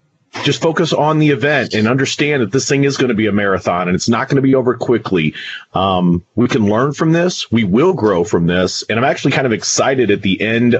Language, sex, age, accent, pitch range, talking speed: English, male, 40-59, American, 115-155 Hz, 245 wpm